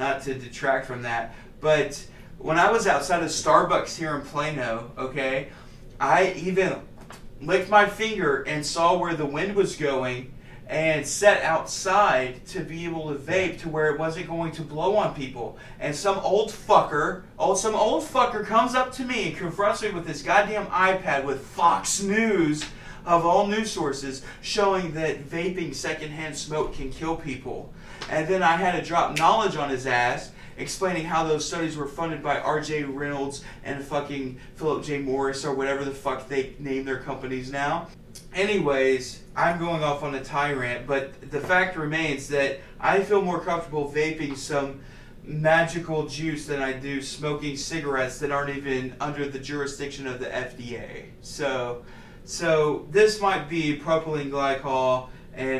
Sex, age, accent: male, 30-49, American